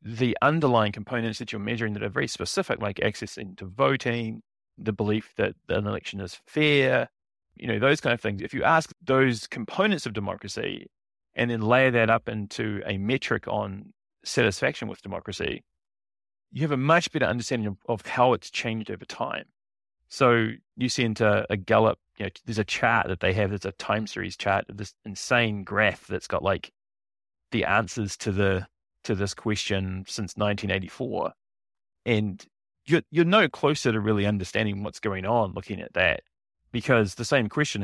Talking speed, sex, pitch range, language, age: 175 wpm, male, 100-120 Hz, English, 30-49